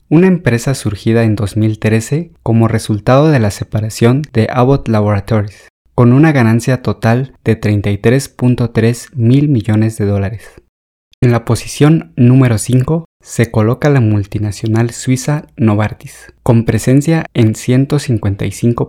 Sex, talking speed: male, 120 wpm